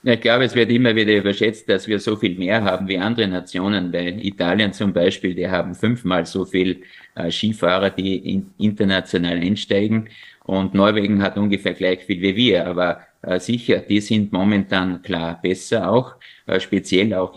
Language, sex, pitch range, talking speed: German, male, 95-110 Hz, 160 wpm